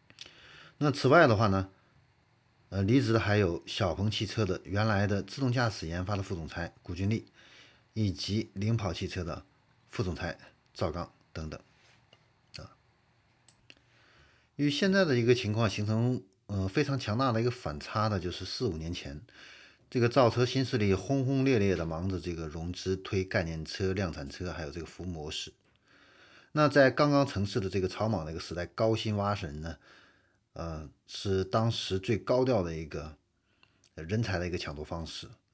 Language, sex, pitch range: Chinese, male, 90-115 Hz